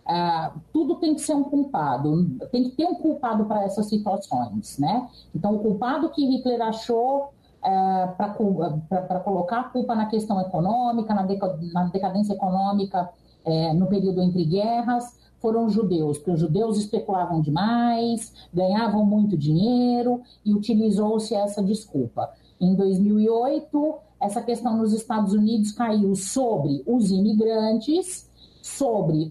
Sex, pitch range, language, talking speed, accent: female, 195-280 Hz, Portuguese, 135 wpm, Brazilian